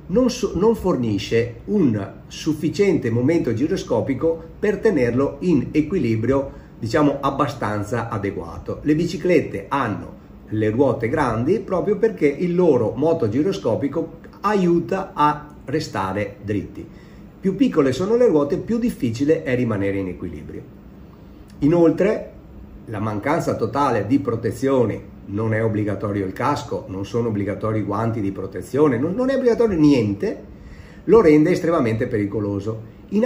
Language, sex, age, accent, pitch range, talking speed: Italian, male, 50-69, native, 100-150 Hz, 120 wpm